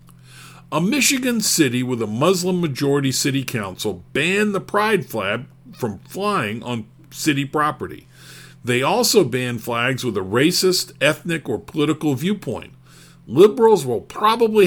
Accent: American